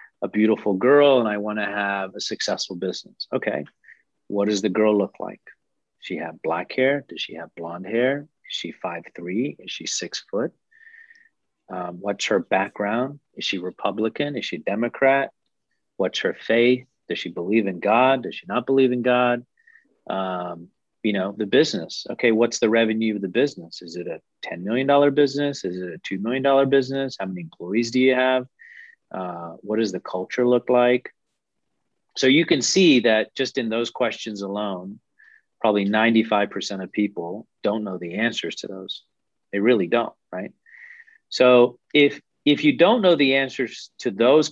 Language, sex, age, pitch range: English, male, 40-59, 105-140 Hz